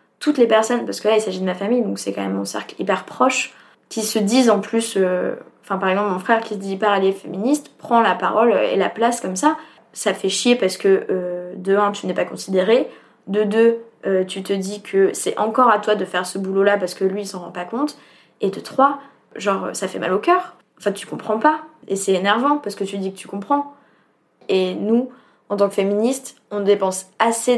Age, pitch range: 20-39, 195-245 Hz